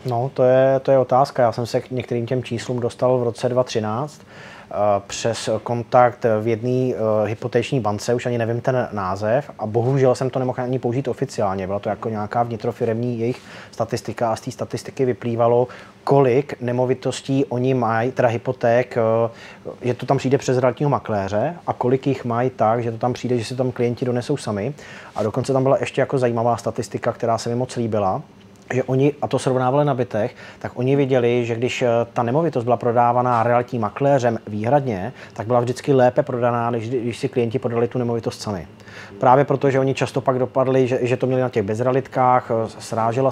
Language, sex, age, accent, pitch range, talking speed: Czech, male, 20-39, native, 115-130 Hz, 190 wpm